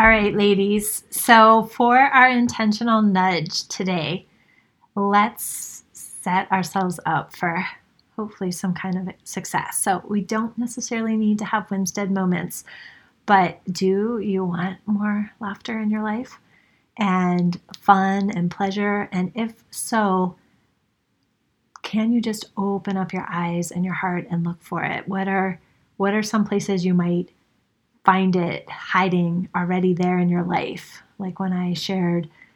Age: 30-49